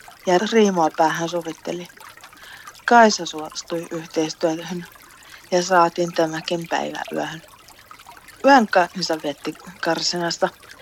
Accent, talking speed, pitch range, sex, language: native, 90 wpm, 150-185 Hz, female, Finnish